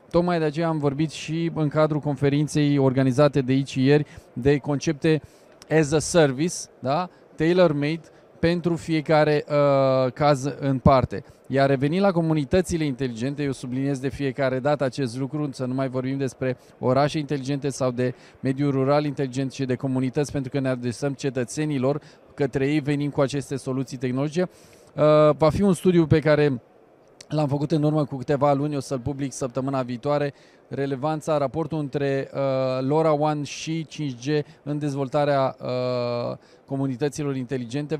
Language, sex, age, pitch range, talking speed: Romanian, male, 20-39, 135-150 Hz, 145 wpm